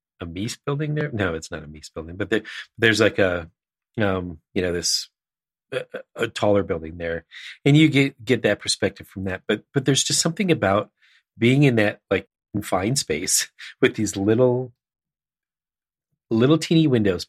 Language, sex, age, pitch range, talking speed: English, male, 40-59, 95-120 Hz, 175 wpm